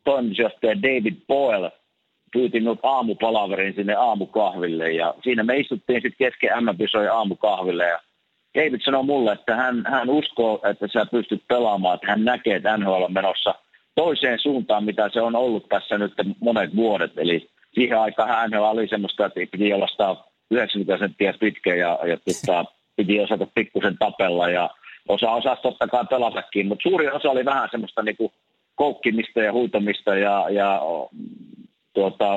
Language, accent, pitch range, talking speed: Finnish, native, 100-135 Hz, 155 wpm